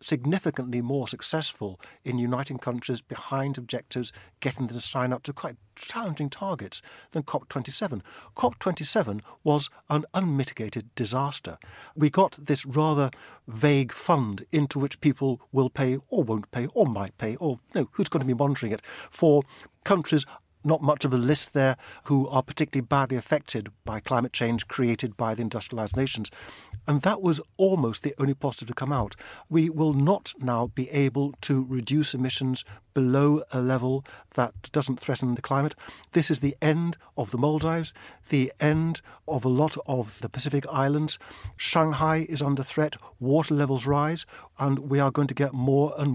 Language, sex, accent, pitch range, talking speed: English, male, British, 125-150 Hz, 165 wpm